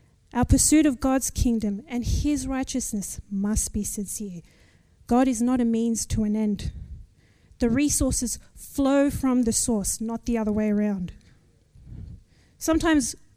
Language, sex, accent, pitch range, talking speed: English, female, Australian, 215-265 Hz, 140 wpm